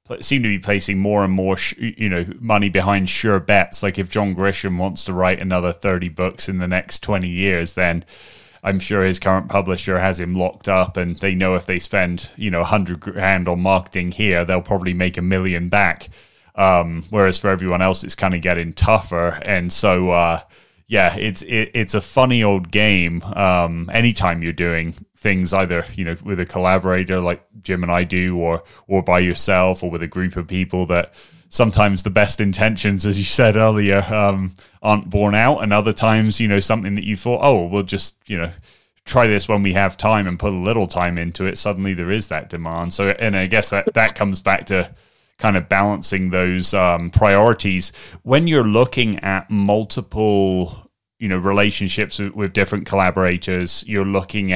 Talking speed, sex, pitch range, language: 195 wpm, male, 90-105 Hz, English